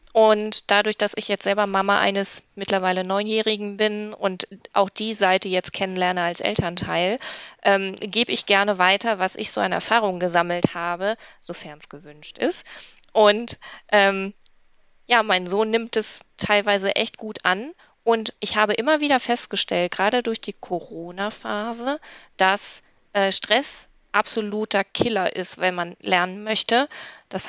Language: German